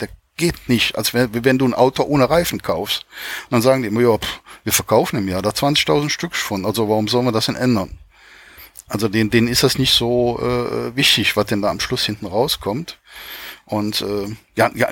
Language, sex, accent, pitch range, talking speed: German, male, German, 110-135 Hz, 210 wpm